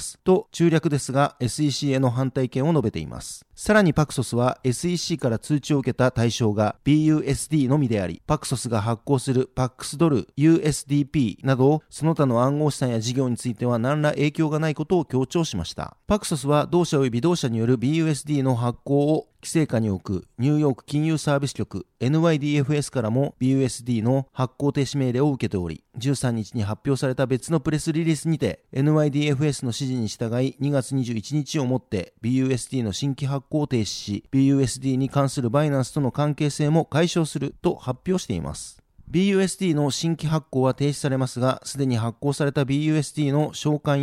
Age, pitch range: 40-59, 125-150 Hz